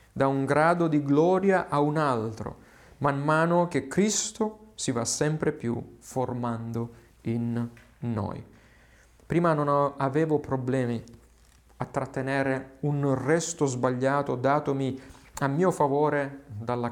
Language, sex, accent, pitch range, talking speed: Italian, male, native, 120-155 Hz, 115 wpm